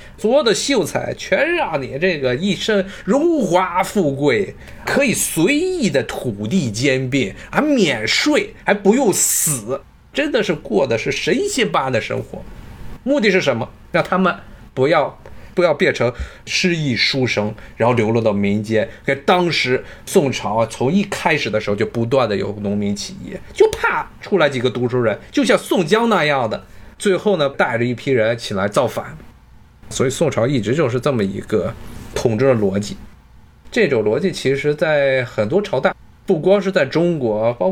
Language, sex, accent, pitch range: Chinese, male, native, 120-195 Hz